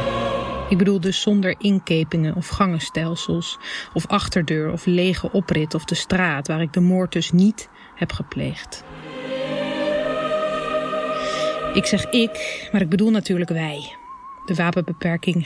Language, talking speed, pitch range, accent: Dutch, 130 wpm, 165-205 Hz, Dutch